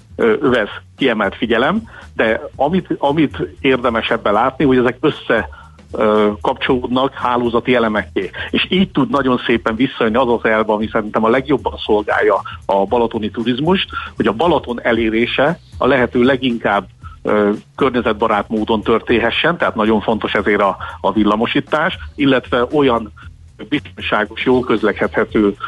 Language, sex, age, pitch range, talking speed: Hungarian, male, 50-69, 105-130 Hz, 125 wpm